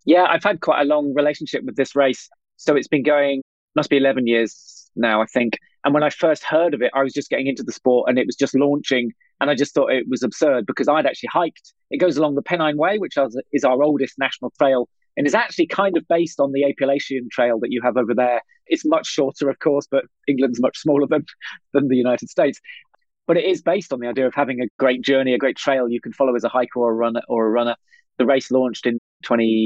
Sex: male